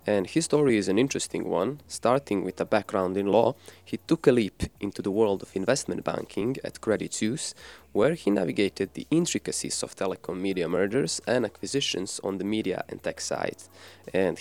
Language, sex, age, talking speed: English, male, 20-39, 185 wpm